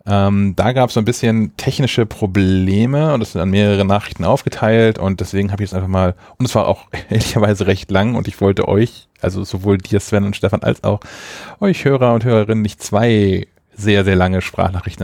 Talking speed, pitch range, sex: 210 wpm, 95-110 Hz, male